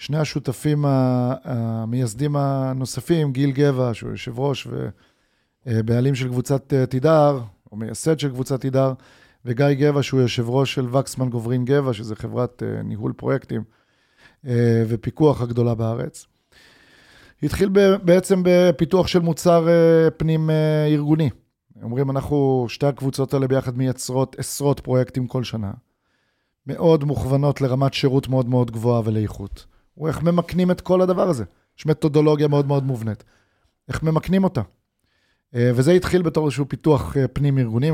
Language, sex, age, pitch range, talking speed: Hebrew, male, 30-49, 125-155 Hz, 125 wpm